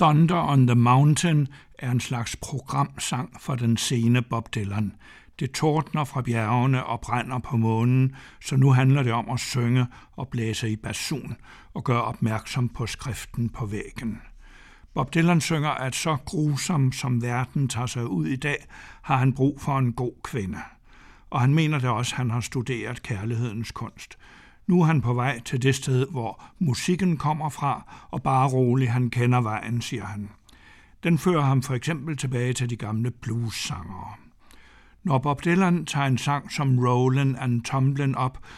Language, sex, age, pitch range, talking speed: Danish, male, 60-79, 120-140 Hz, 175 wpm